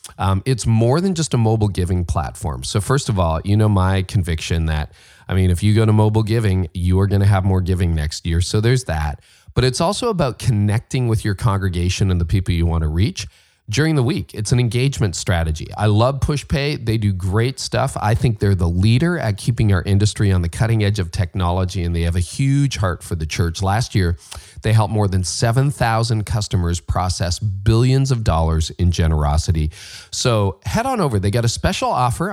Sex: male